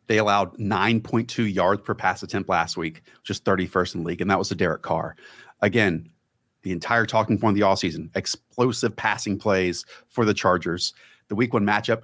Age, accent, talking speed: 30-49, American, 195 wpm